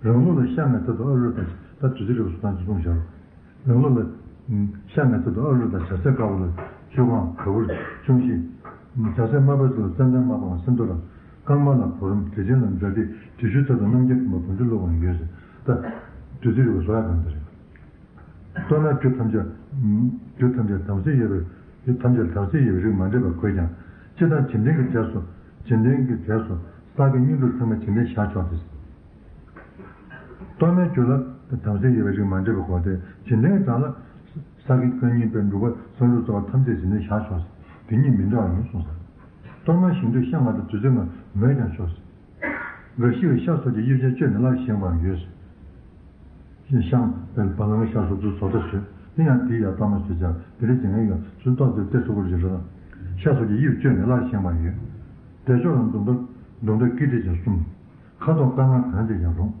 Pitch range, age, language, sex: 95-125 Hz, 60-79, Italian, male